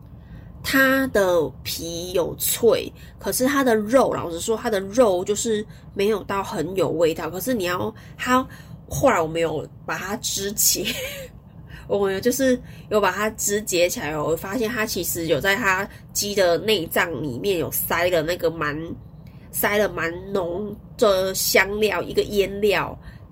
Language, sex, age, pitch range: Chinese, female, 20-39, 165-225 Hz